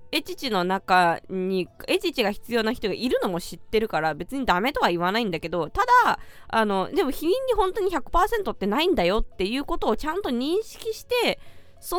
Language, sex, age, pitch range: Japanese, female, 20-39, 225-345 Hz